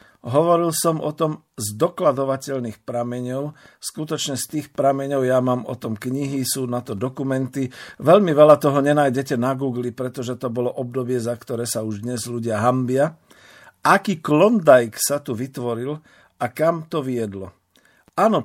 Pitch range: 125-150 Hz